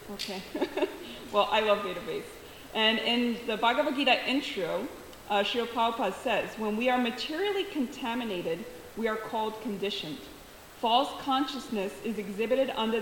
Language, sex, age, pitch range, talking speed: English, female, 30-49, 205-260 Hz, 135 wpm